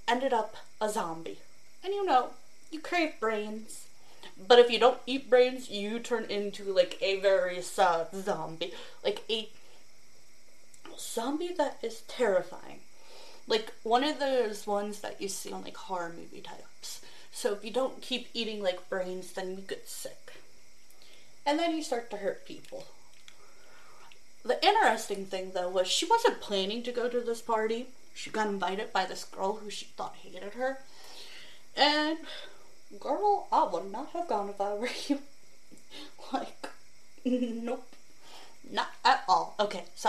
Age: 30-49